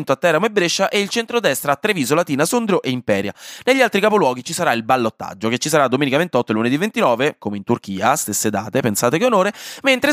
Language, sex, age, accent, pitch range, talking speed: Italian, male, 20-39, native, 115-180 Hz, 220 wpm